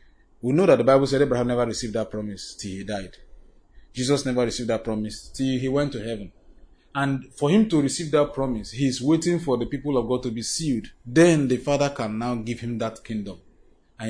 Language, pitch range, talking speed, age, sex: English, 110-135 Hz, 220 wpm, 30-49, male